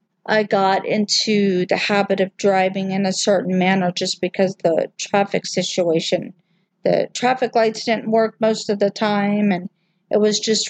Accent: American